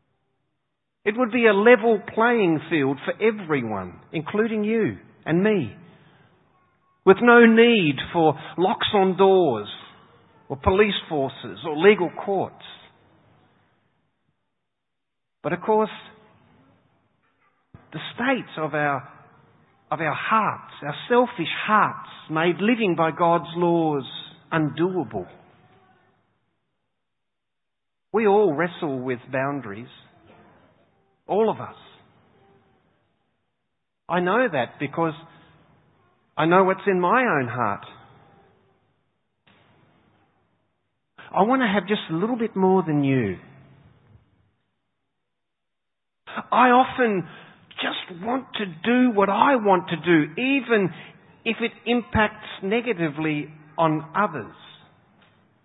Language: English